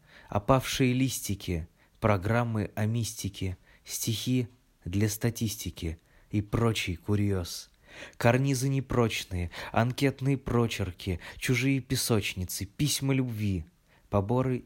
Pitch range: 95-125 Hz